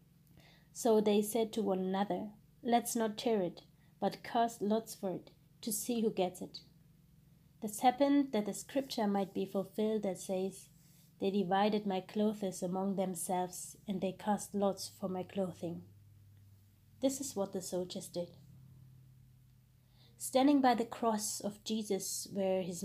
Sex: female